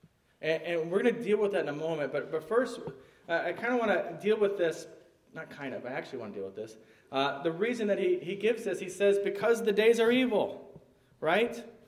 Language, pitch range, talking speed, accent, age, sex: English, 155-205 Hz, 235 wpm, American, 30-49, male